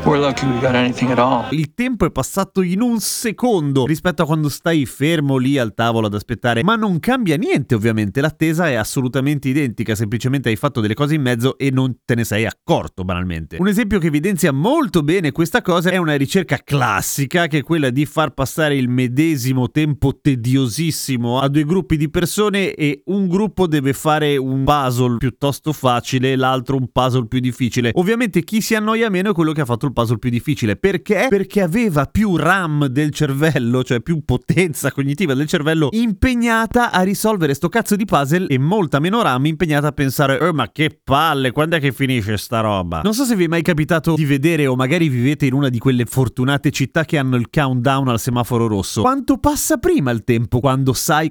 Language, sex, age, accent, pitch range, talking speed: Italian, male, 30-49, native, 125-175 Hz, 190 wpm